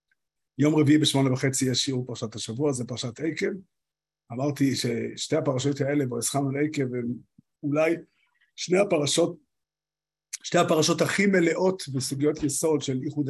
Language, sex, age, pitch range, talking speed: Hebrew, male, 50-69, 130-155 Hz, 130 wpm